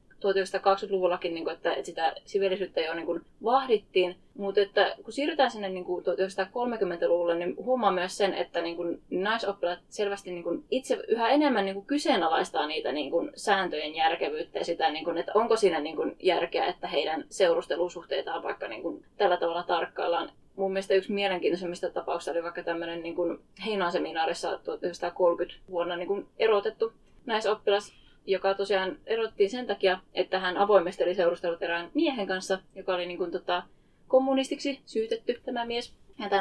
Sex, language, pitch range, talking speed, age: female, Finnish, 180-225 Hz, 120 wpm, 20-39